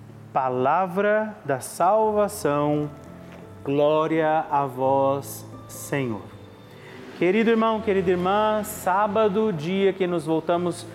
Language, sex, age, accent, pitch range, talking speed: Portuguese, male, 30-49, Brazilian, 150-195 Hz, 90 wpm